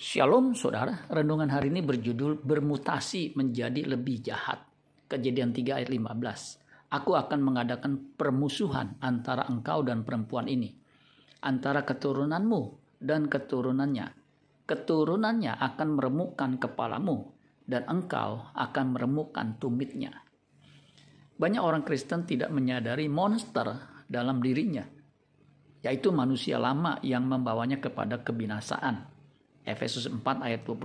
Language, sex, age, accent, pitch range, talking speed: Indonesian, male, 50-69, native, 125-150 Hz, 105 wpm